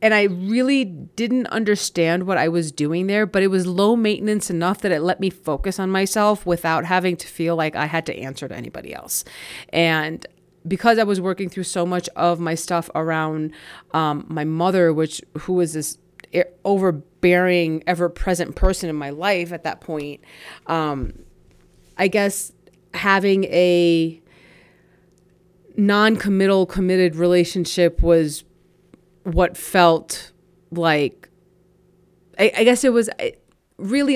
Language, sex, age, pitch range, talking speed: English, female, 30-49, 170-190 Hz, 145 wpm